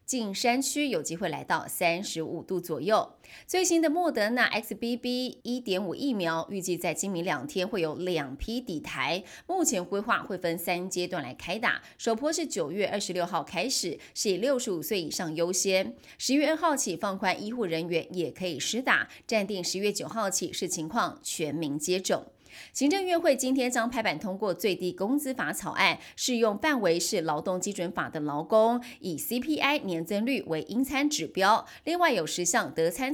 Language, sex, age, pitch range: Chinese, female, 20-39, 175-255 Hz